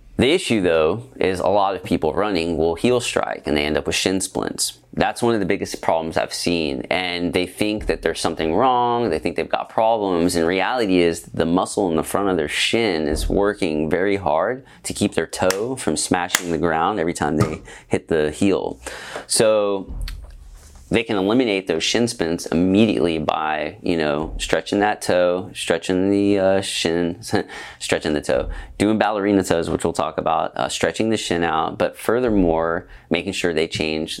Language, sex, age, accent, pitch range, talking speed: English, male, 30-49, American, 80-100 Hz, 190 wpm